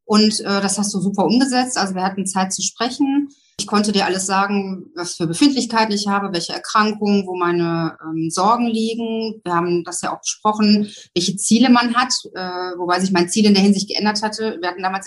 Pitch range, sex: 190-230 Hz, female